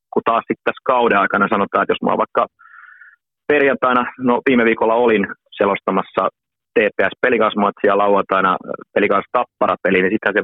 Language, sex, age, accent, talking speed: Finnish, male, 30-49, native, 145 wpm